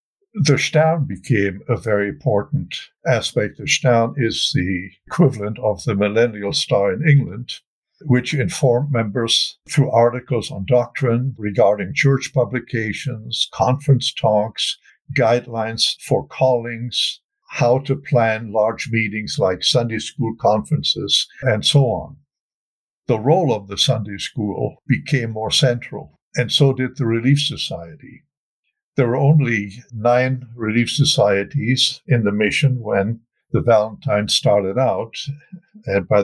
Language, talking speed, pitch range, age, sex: English, 125 wpm, 110-140 Hz, 60-79, male